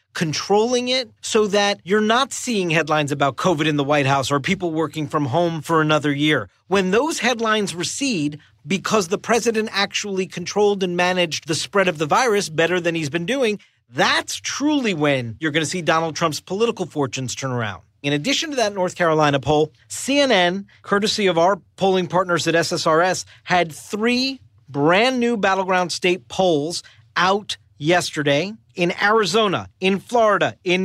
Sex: male